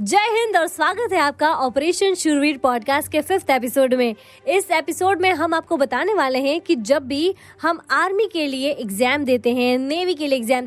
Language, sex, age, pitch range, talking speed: Hindi, female, 20-39, 265-340 Hz, 195 wpm